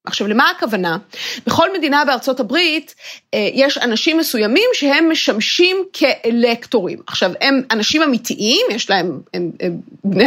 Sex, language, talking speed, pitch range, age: female, Hebrew, 130 wpm, 220-320 Hz, 30-49